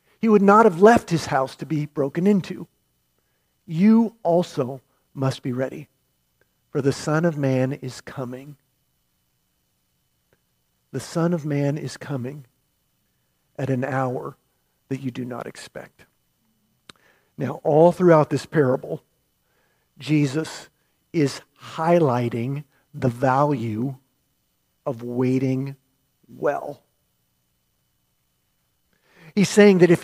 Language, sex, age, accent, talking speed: English, male, 50-69, American, 110 wpm